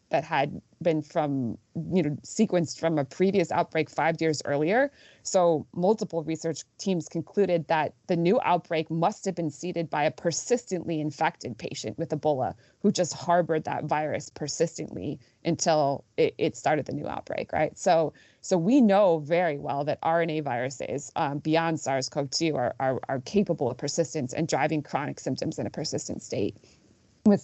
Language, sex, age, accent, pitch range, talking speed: English, female, 20-39, American, 150-185 Hz, 165 wpm